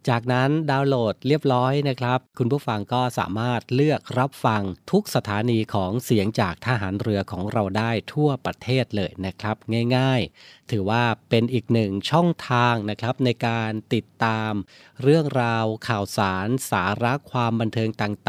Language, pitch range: Thai, 105-130 Hz